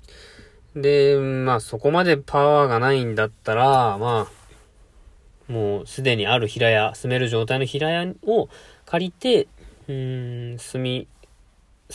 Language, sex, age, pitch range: Japanese, male, 20-39, 110-155 Hz